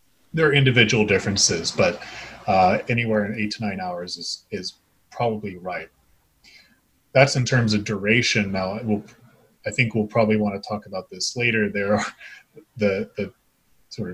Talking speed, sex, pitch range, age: 160 wpm, male, 100-120 Hz, 20-39